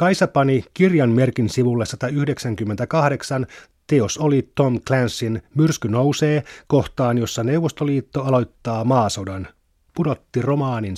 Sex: male